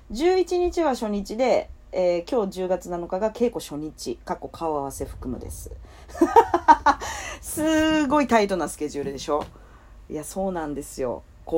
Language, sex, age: Japanese, female, 40-59